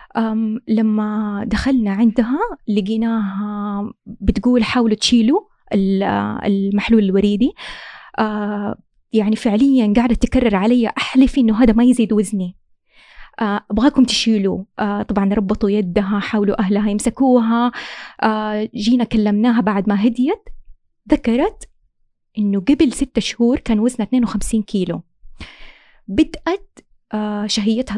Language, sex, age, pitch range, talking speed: Arabic, female, 20-39, 210-250 Hz, 105 wpm